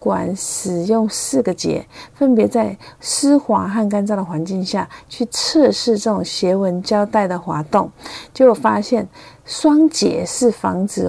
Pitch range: 190-240 Hz